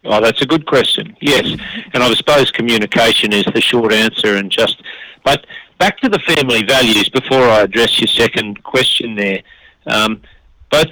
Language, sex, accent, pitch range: English, male, Australian, 105-125 Hz